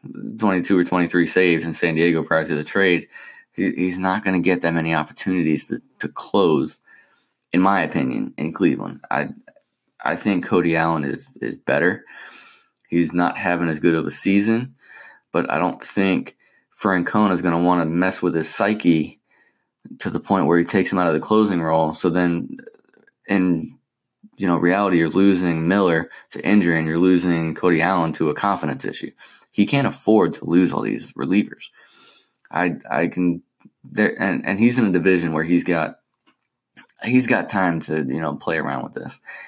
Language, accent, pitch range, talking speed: English, American, 80-90 Hz, 185 wpm